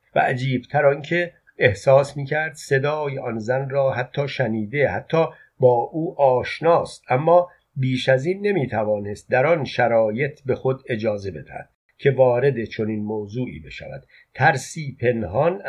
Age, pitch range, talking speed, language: 50-69, 115-150 Hz, 130 wpm, Persian